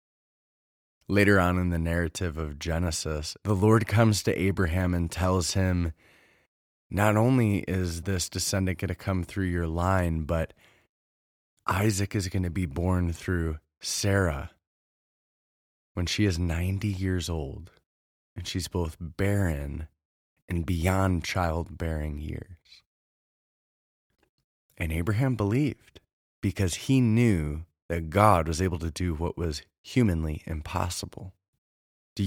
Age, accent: 20-39, American